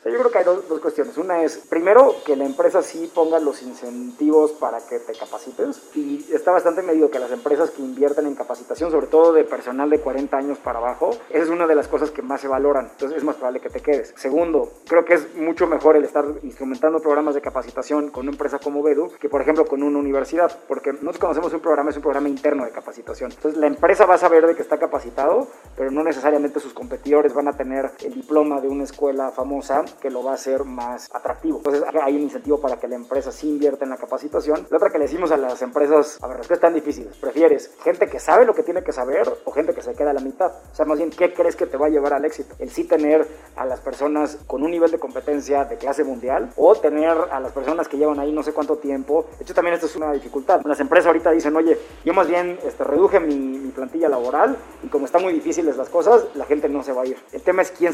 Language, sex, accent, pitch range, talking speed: Spanish, male, Mexican, 140-170 Hz, 250 wpm